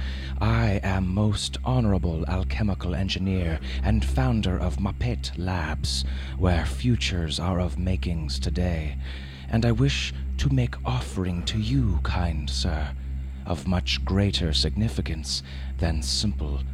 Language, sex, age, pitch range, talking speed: English, male, 30-49, 65-100 Hz, 120 wpm